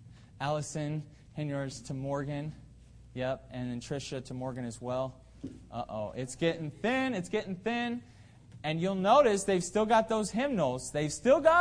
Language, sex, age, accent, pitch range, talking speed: English, male, 20-39, American, 120-150 Hz, 155 wpm